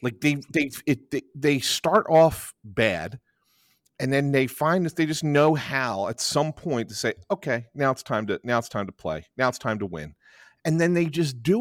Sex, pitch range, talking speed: male, 115-165 Hz, 215 wpm